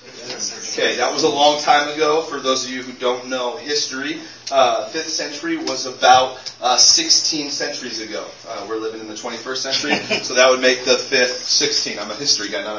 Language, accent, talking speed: English, American, 200 wpm